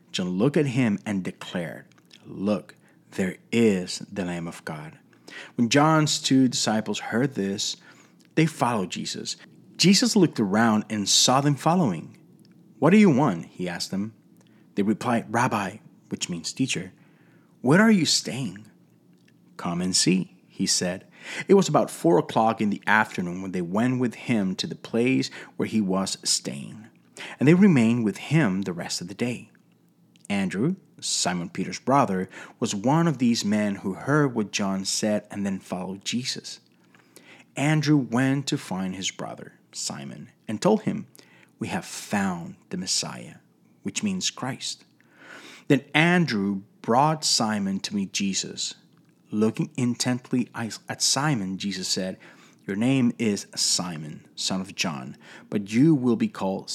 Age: 30-49